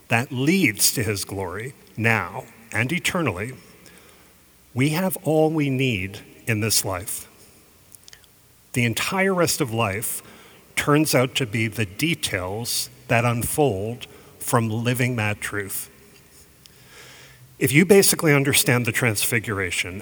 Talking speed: 115 wpm